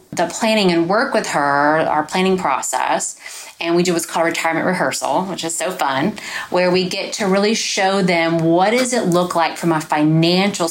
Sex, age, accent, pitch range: female, 30-49, American, 155-195 Hz